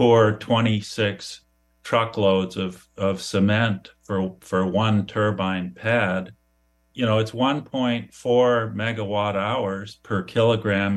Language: English